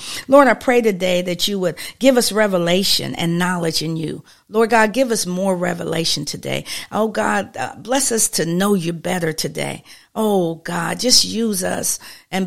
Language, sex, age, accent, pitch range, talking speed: English, female, 50-69, American, 175-205 Hz, 175 wpm